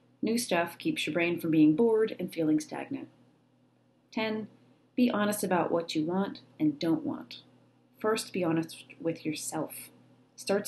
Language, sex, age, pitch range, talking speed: English, female, 30-49, 155-210 Hz, 150 wpm